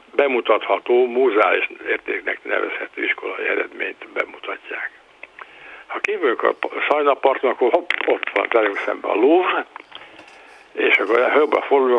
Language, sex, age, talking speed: Hungarian, male, 60-79, 110 wpm